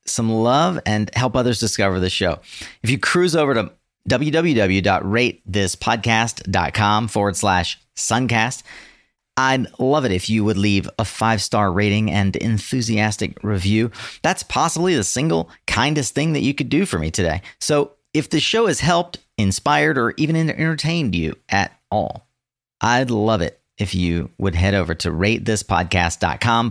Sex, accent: male, American